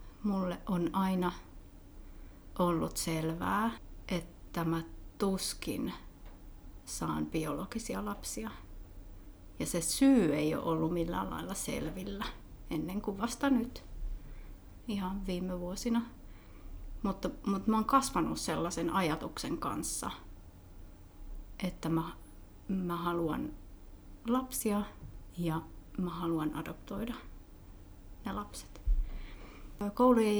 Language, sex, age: Finnish, female, 30-49